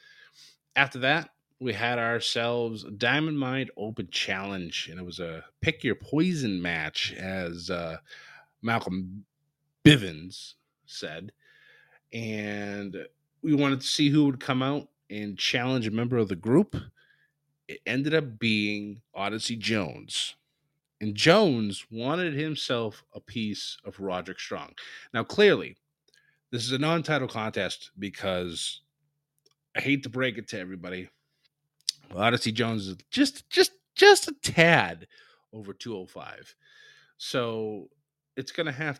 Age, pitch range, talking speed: 30-49, 105-145 Hz, 130 wpm